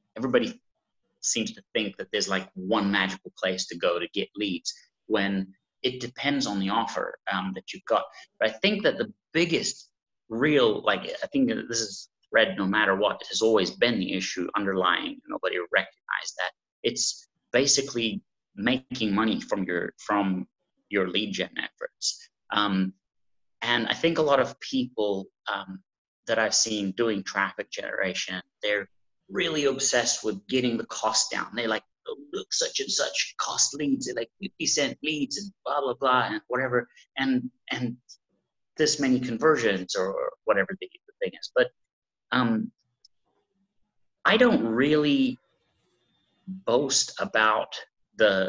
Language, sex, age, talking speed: English, male, 30-49, 155 wpm